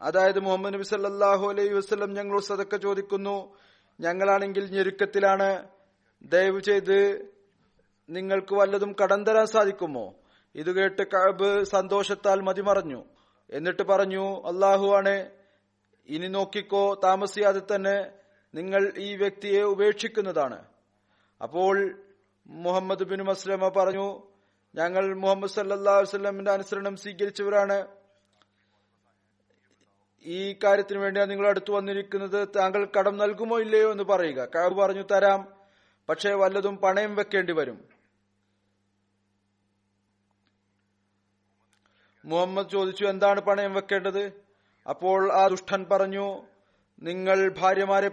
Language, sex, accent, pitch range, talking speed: Malayalam, male, native, 175-200 Hz, 95 wpm